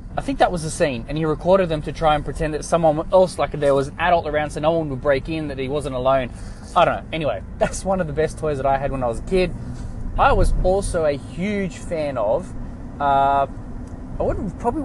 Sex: male